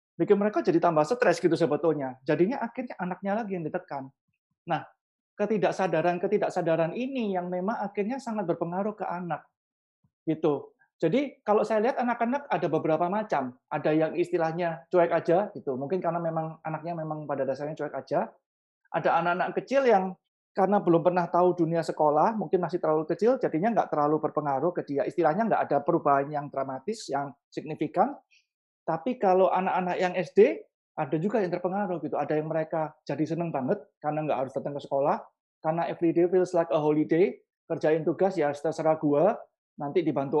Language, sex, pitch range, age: Indonesian, male, 155-205 Hz, 30-49